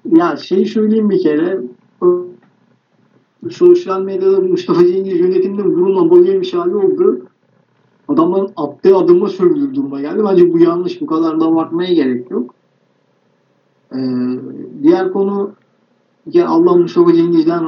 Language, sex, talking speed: Turkish, male, 125 wpm